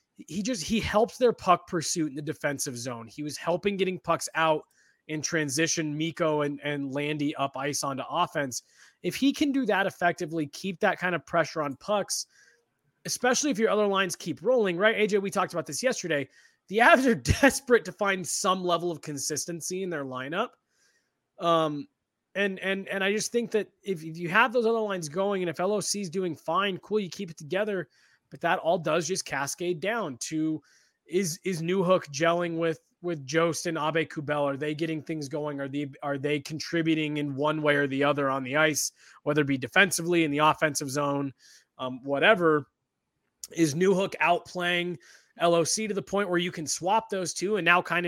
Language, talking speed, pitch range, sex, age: English, 195 wpm, 150-190 Hz, male, 20-39